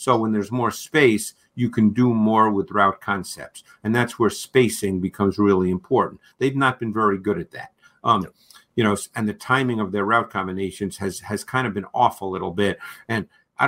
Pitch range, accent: 105-125 Hz, American